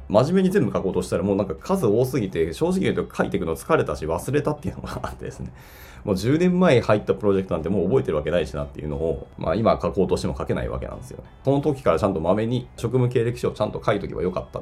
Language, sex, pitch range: Japanese, male, 75-115 Hz